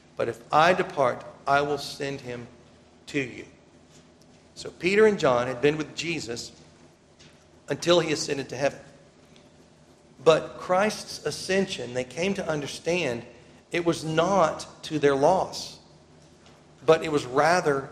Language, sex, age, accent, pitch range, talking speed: English, male, 40-59, American, 110-155 Hz, 135 wpm